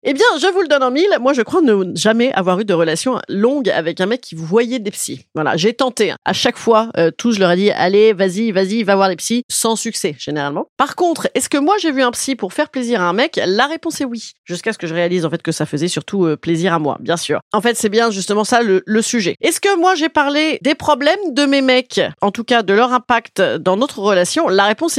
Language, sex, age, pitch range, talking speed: French, female, 30-49, 180-285 Hz, 270 wpm